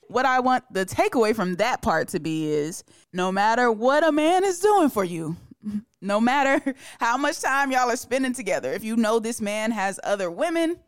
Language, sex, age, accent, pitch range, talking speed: English, female, 20-39, American, 185-245 Hz, 205 wpm